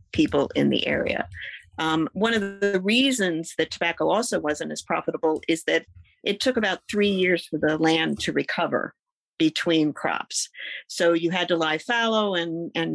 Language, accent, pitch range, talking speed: English, American, 160-200 Hz, 170 wpm